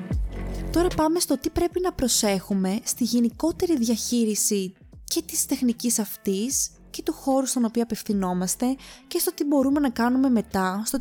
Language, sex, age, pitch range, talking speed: Greek, female, 20-39, 200-265 Hz, 155 wpm